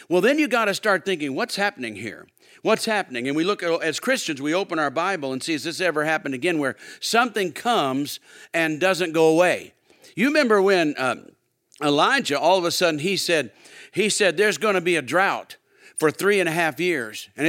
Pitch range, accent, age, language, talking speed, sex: 145-195 Hz, American, 50-69, English, 215 wpm, male